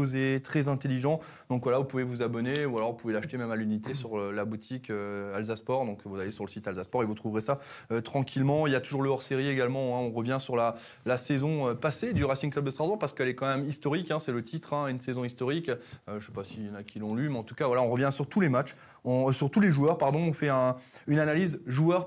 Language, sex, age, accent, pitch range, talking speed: French, male, 20-39, French, 115-145 Hz, 285 wpm